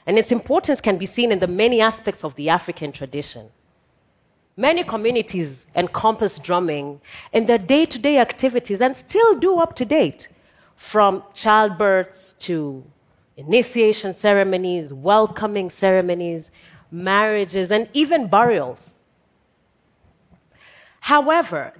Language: Russian